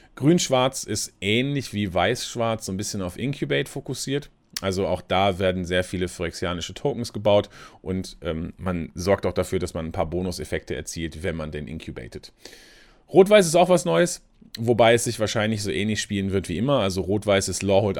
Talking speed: 185 wpm